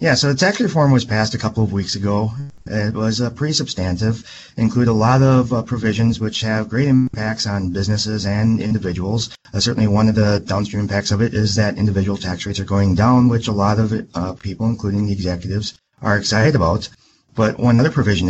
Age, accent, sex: 30-49, American, male